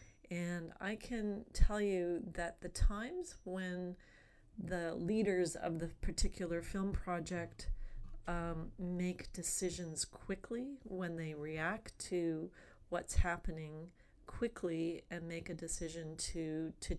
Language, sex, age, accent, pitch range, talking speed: English, female, 40-59, American, 160-195 Hz, 115 wpm